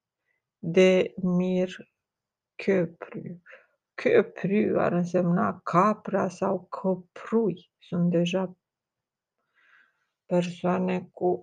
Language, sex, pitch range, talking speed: Romanian, female, 170-190 Hz, 70 wpm